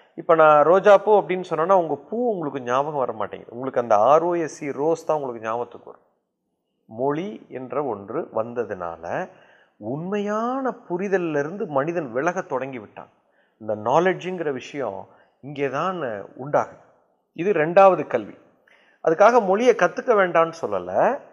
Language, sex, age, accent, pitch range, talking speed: Tamil, male, 30-49, native, 160-225 Hz, 115 wpm